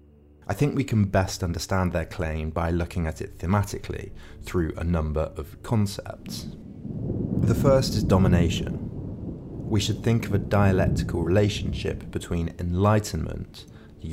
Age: 30-49